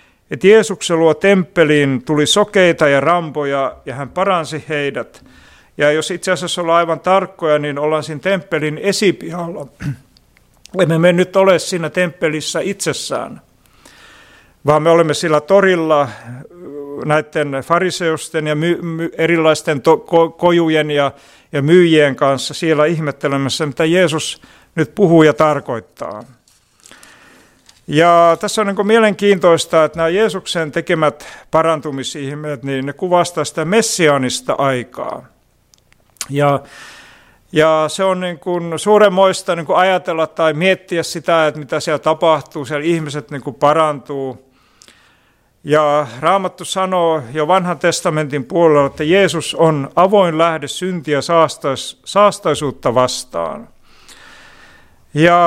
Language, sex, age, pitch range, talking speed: Finnish, male, 50-69, 150-180 Hz, 110 wpm